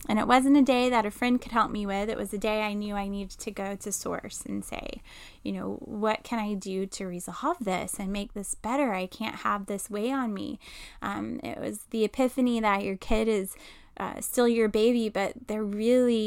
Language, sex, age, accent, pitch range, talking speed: English, female, 10-29, American, 195-230 Hz, 230 wpm